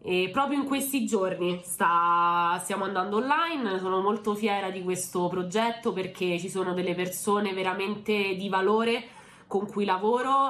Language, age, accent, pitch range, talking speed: Italian, 20-39, native, 185-225 Hz, 150 wpm